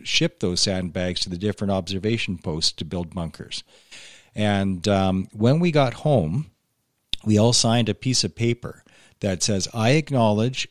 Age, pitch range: 40-59, 95-120 Hz